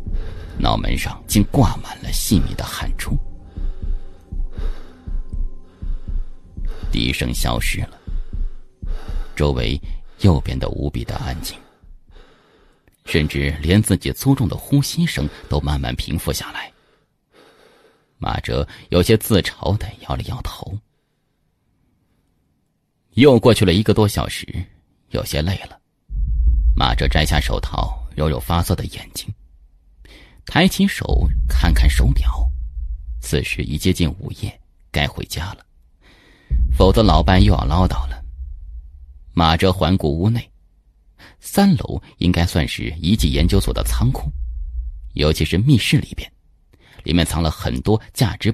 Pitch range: 70-95 Hz